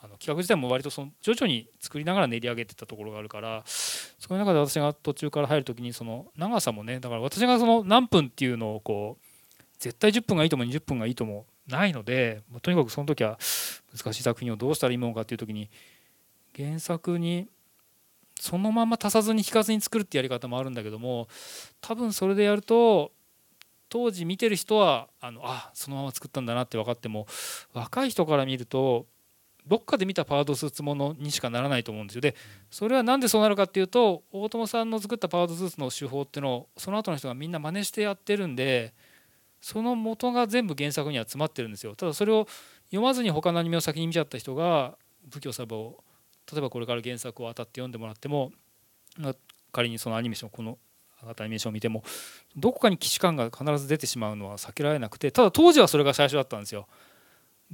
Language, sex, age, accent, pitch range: Japanese, male, 20-39, native, 120-195 Hz